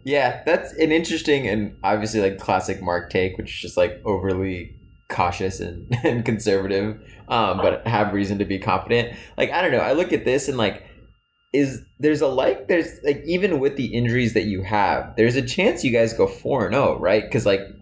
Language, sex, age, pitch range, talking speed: English, male, 20-39, 95-115 Hz, 205 wpm